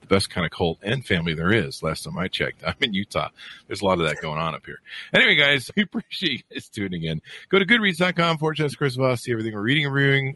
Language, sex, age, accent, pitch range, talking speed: English, male, 50-69, American, 100-150 Hz, 255 wpm